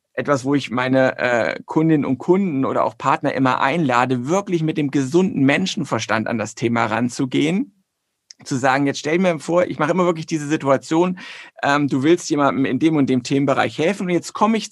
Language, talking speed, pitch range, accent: German, 195 wpm, 130-165 Hz, German